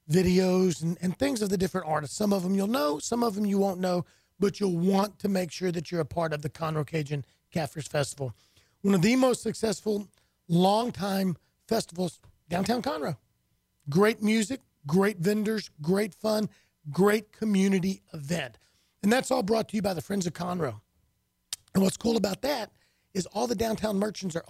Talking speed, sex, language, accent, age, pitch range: 185 wpm, male, English, American, 40-59, 170-225 Hz